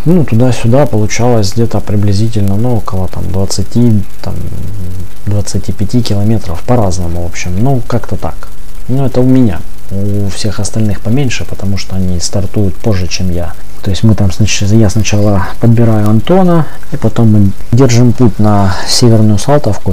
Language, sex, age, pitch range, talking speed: Russian, male, 20-39, 95-115 Hz, 140 wpm